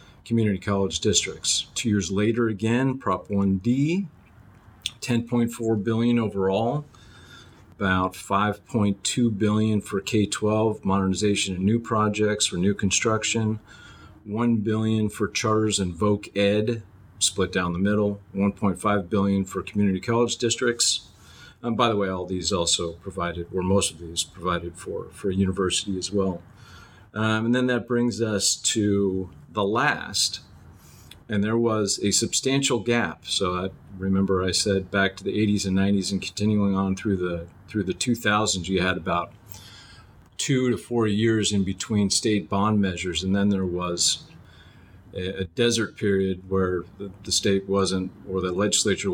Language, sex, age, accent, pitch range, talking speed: English, male, 40-59, American, 95-110 Hz, 150 wpm